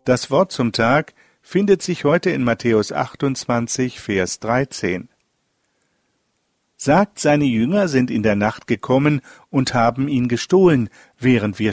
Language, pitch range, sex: German, 115-150 Hz, male